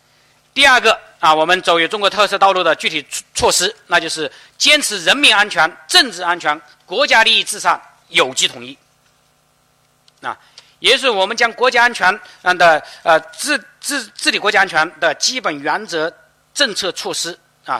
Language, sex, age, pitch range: Chinese, male, 50-69, 145-245 Hz